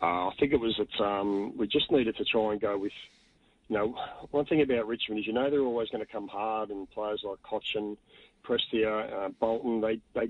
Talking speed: 235 wpm